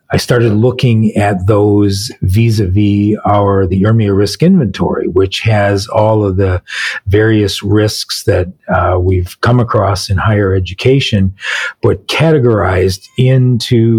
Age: 40-59